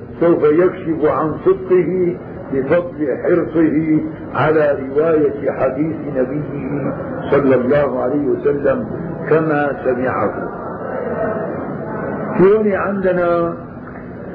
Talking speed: 75 wpm